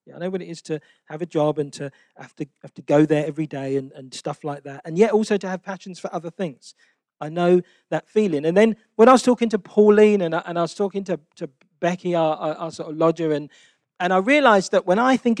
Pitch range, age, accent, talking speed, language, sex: 155-205 Hz, 40-59, British, 270 wpm, English, male